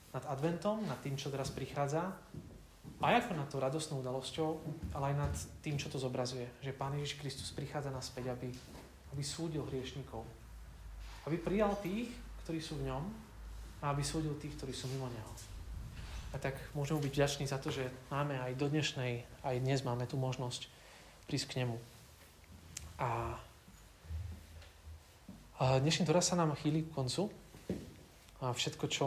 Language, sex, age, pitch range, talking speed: Slovak, male, 30-49, 115-145 Hz, 155 wpm